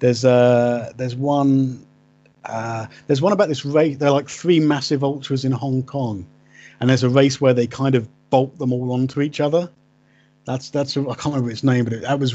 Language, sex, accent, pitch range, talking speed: English, male, British, 125-150 Hz, 210 wpm